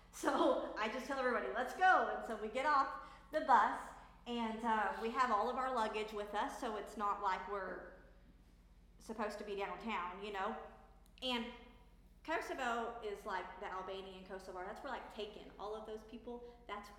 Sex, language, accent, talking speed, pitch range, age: female, English, American, 180 wpm, 205-260 Hz, 40-59